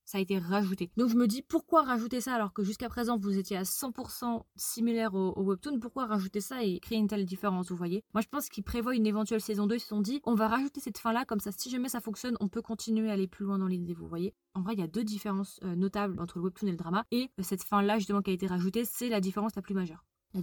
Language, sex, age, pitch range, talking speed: French, female, 20-39, 190-230 Hz, 295 wpm